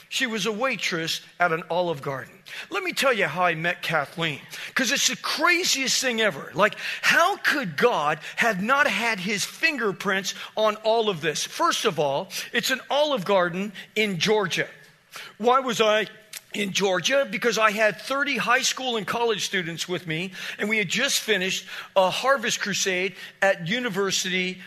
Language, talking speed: English, 170 wpm